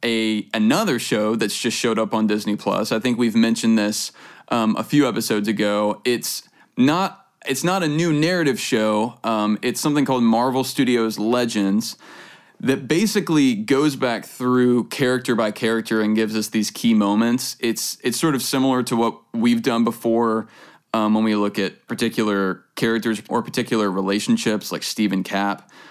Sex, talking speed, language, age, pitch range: male, 165 wpm, English, 20-39, 105-130 Hz